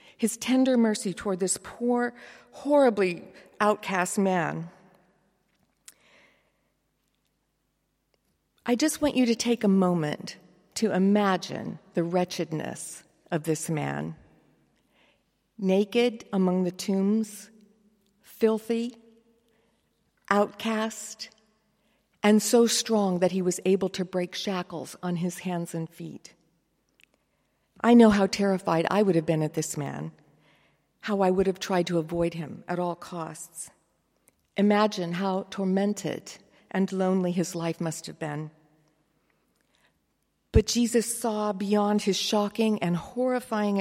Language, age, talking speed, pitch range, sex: English, 50-69, 115 wpm, 170-210 Hz, female